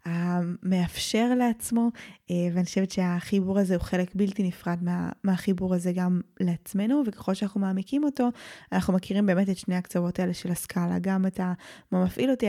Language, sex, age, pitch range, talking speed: Hebrew, female, 10-29, 180-210 Hz, 165 wpm